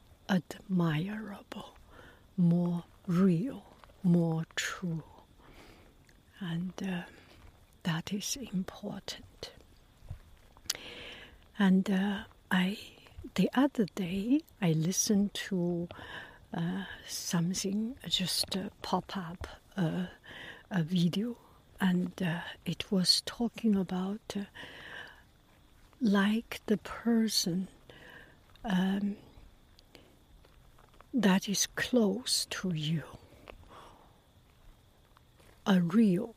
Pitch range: 175-210 Hz